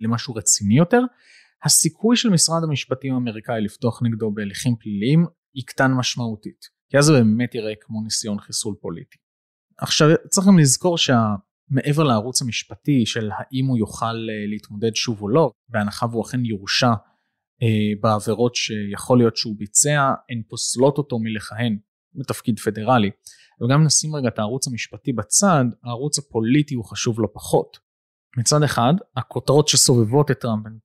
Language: Hebrew